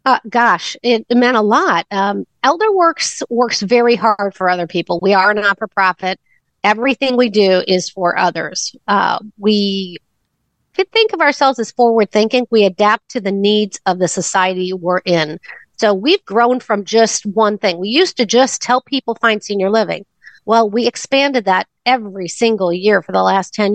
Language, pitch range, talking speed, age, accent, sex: English, 190-240 Hz, 175 wpm, 50-69, American, female